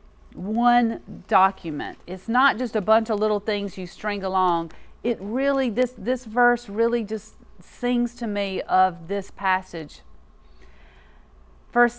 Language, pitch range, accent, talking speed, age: English, 180-235 Hz, American, 135 wpm, 40-59